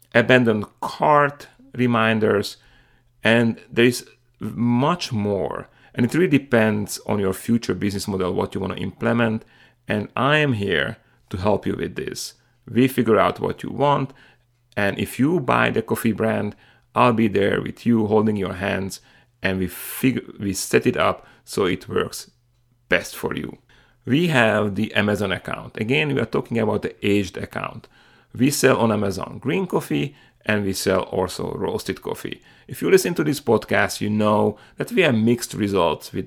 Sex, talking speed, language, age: male, 170 wpm, English, 40-59